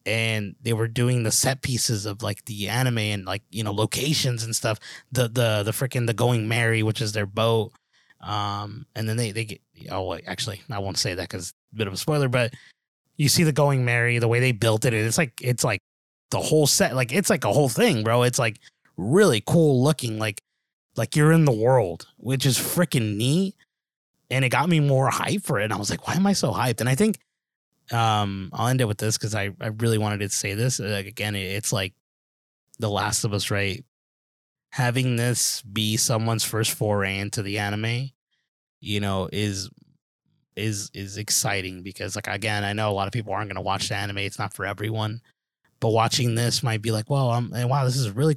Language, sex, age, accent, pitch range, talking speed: English, male, 20-39, American, 105-130 Hz, 220 wpm